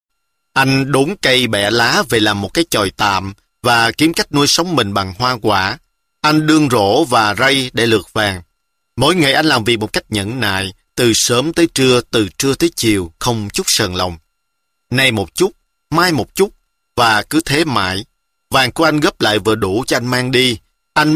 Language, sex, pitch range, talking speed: Vietnamese, male, 100-140 Hz, 200 wpm